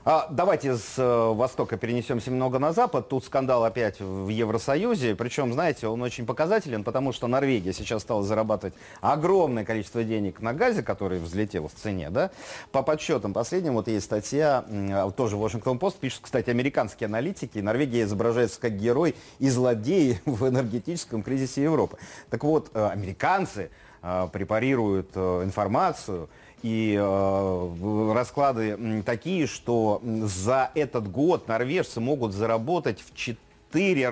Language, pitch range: Russian, 110-155 Hz